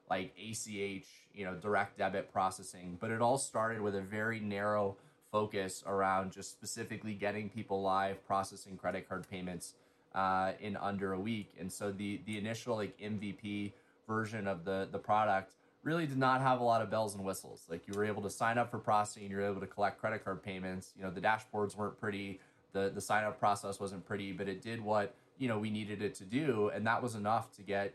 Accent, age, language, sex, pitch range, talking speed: American, 20-39, English, male, 95-110 Hz, 215 wpm